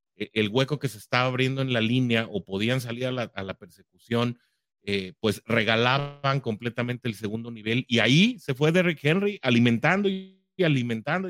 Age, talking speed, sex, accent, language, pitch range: 40-59, 175 wpm, male, Mexican, English, 115-155 Hz